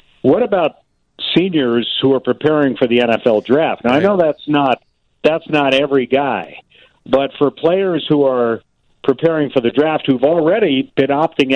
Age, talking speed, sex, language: 50-69, 165 wpm, male, English